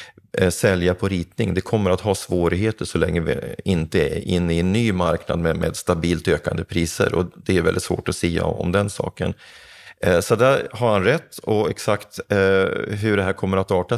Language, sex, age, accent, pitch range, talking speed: Swedish, male, 30-49, native, 90-115 Hz, 200 wpm